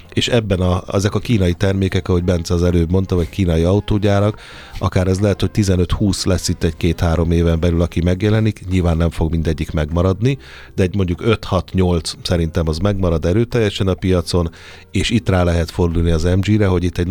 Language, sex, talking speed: Hungarian, male, 180 wpm